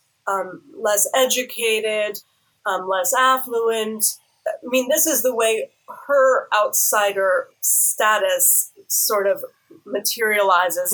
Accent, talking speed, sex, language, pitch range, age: American, 100 wpm, female, English, 205-265 Hz, 30-49